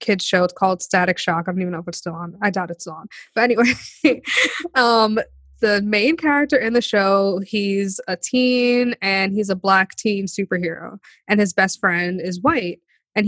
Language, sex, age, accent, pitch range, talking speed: English, female, 20-39, American, 185-220 Hz, 200 wpm